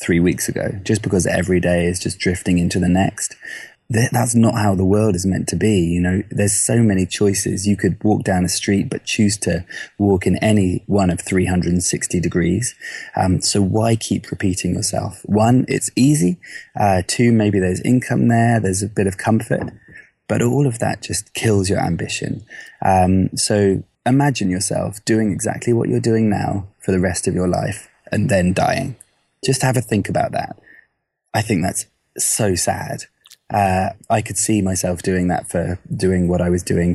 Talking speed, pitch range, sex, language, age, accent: 185 wpm, 90-115 Hz, male, Polish, 20-39, British